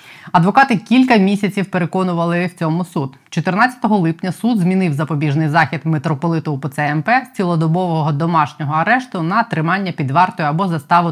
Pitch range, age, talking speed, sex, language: 150-185 Hz, 20-39, 140 wpm, female, Ukrainian